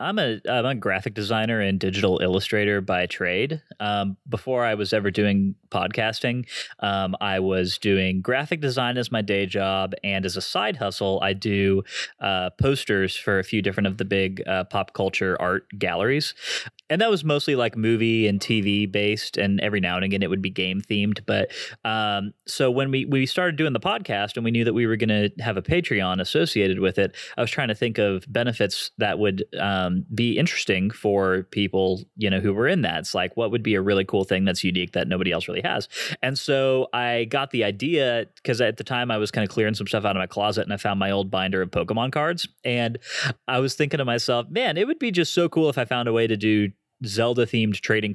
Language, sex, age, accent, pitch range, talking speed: English, male, 20-39, American, 95-120 Hz, 225 wpm